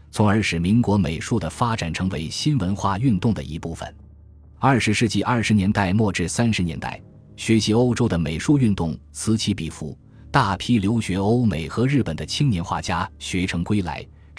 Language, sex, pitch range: Chinese, male, 85-115 Hz